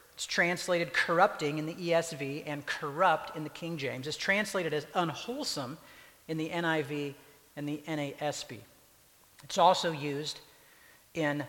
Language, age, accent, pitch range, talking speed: English, 50-69, American, 150-195 Hz, 135 wpm